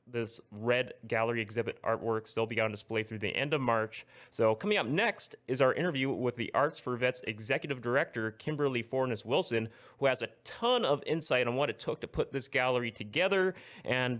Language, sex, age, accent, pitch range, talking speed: English, male, 30-49, American, 115-155 Hz, 195 wpm